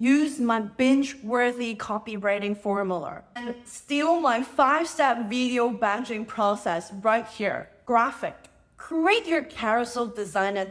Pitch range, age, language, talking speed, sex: 215-280 Hz, 20-39, English, 105 wpm, female